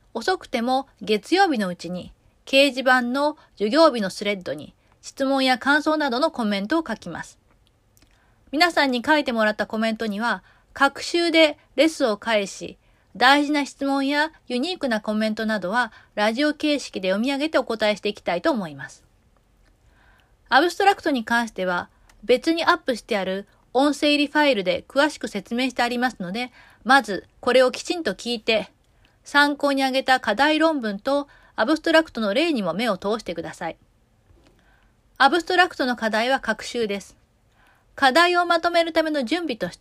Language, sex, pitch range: Japanese, female, 215-295 Hz